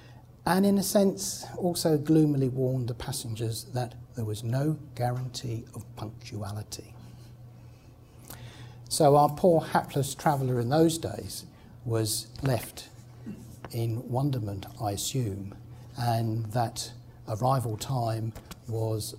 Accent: British